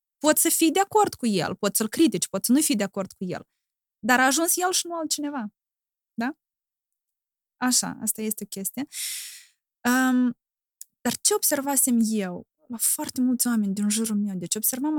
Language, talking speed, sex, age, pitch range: Romanian, 175 wpm, female, 20-39, 210-300 Hz